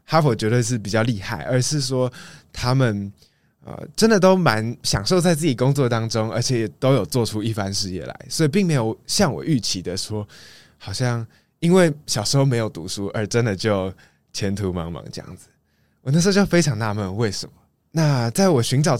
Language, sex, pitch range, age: Chinese, male, 100-135 Hz, 20-39